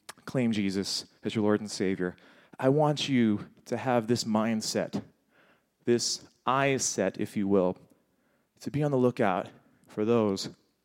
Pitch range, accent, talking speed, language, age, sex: 100-120 Hz, American, 150 wpm, English, 30-49, male